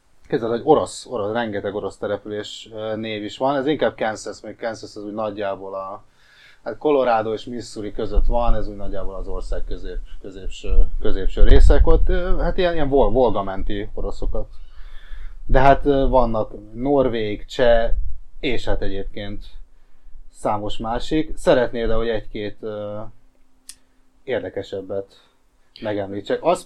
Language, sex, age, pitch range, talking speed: Hungarian, male, 30-49, 100-130 Hz, 125 wpm